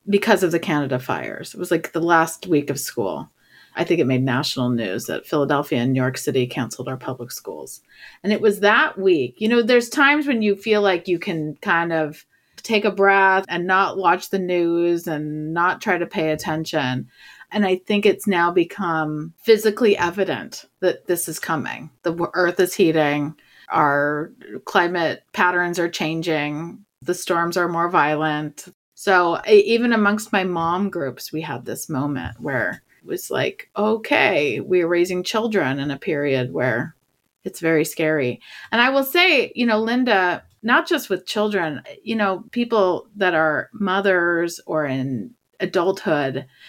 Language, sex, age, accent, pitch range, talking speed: English, female, 30-49, American, 155-200 Hz, 170 wpm